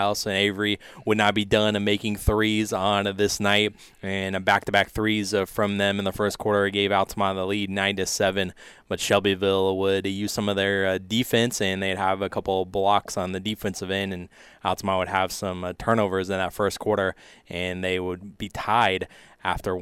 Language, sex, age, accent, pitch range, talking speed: English, male, 20-39, American, 95-105 Hz, 185 wpm